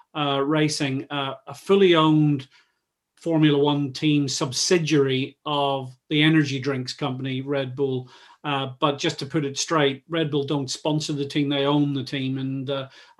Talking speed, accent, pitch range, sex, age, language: 165 wpm, British, 140-155 Hz, male, 40-59, English